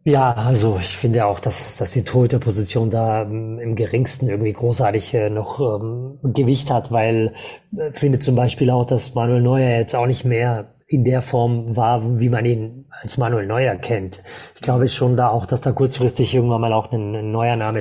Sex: male